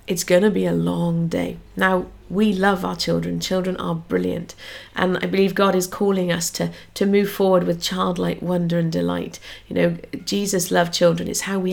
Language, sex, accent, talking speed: English, female, British, 195 wpm